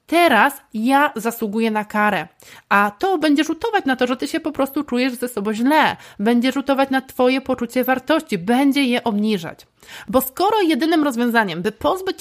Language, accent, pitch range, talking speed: Polish, native, 220-285 Hz, 170 wpm